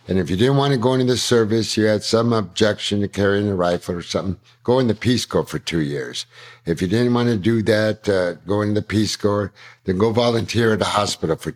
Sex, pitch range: male, 100-125 Hz